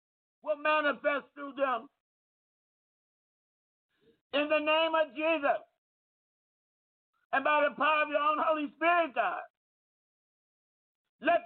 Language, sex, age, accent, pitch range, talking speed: English, male, 50-69, American, 290-340 Hz, 105 wpm